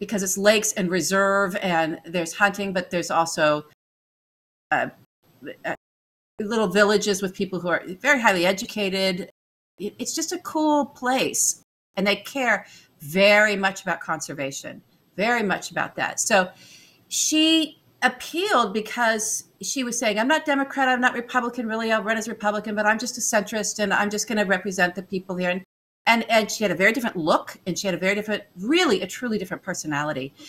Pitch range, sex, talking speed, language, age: 175-225 Hz, female, 175 wpm, English, 50-69